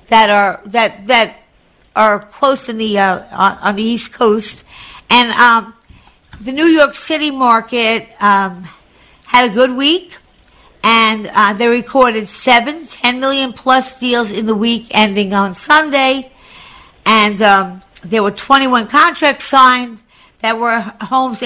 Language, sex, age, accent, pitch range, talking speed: English, female, 50-69, American, 205-255 Hz, 140 wpm